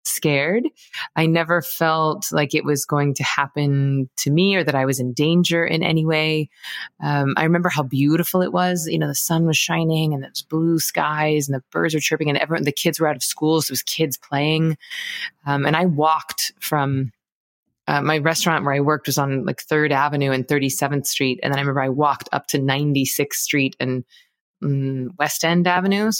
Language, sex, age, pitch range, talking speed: English, female, 20-39, 140-160 Hz, 210 wpm